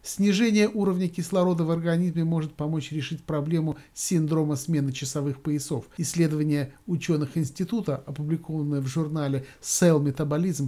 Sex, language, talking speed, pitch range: male, Russian, 120 wpm, 145-175 Hz